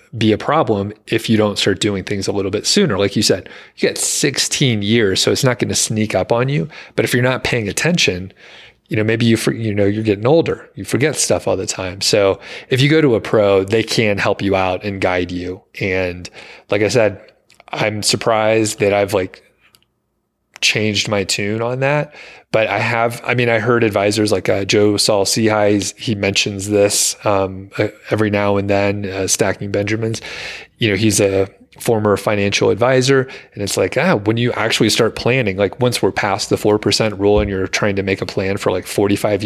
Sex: male